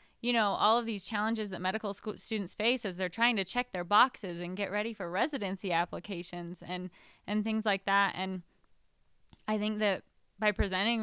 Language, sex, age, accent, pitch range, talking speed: English, female, 10-29, American, 185-225 Hz, 190 wpm